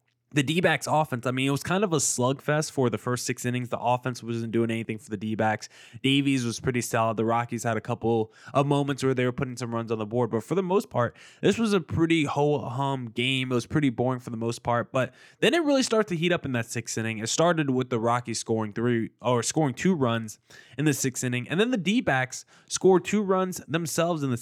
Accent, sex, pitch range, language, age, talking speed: American, male, 120-150 Hz, English, 20-39, 255 wpm